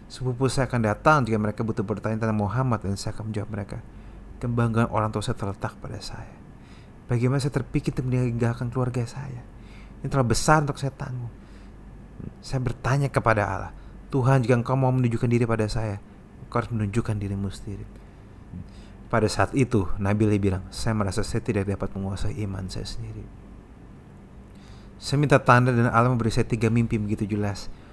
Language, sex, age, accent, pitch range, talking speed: Indonesian, male, 30-49, native, 105-125 Hz, 170 wpm